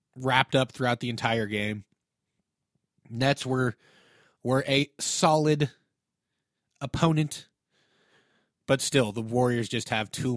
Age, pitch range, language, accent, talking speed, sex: 30-49, 115-155 Hz, English, American, 110 wpm, male